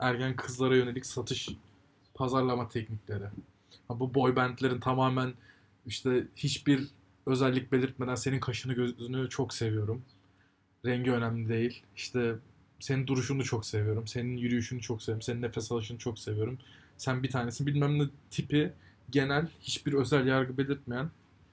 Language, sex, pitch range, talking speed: Turkish, male, 105-135 Hz, 130 wpm